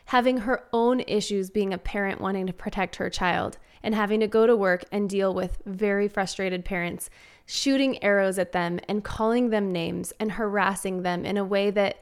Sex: female